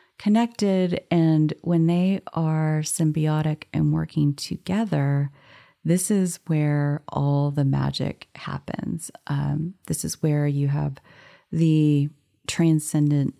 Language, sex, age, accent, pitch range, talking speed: English, female, 30-49, American, 145-165 Hz, 105 wpm